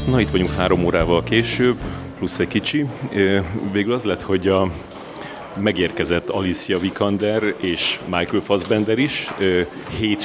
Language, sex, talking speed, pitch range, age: Hungarian, male, 130 wpm, 95-110 Hz, 30-49